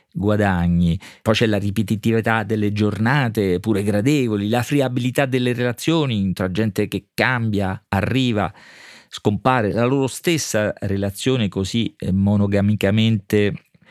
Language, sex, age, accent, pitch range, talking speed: Italian, male, 40-59, native, 100-130 Hz, 110 wpm